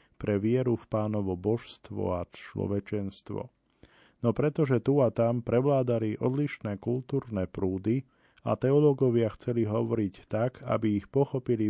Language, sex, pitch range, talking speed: Slovak, male, 105-120 Hz, 125 wpm